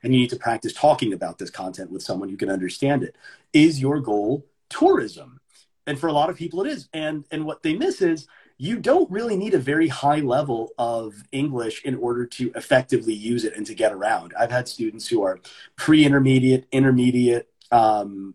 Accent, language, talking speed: American, English, 200 wpm